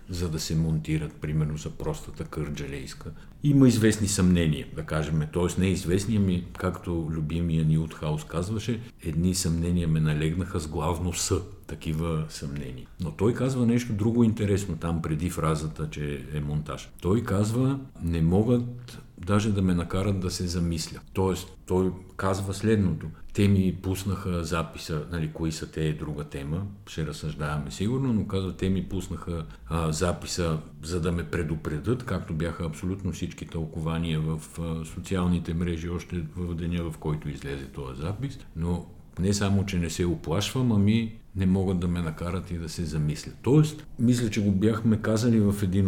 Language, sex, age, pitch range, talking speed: Bulgarian, male, 50-69, 80-100 Hz, 160 wpm